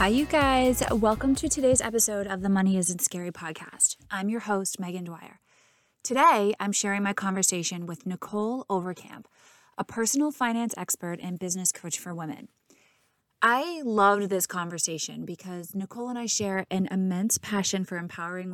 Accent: American